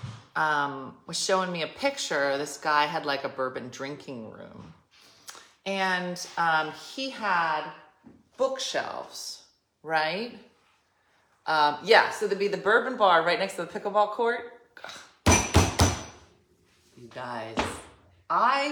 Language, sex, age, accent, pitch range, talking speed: English, female, 30-49, American, 155-210 Hz, 120 wpm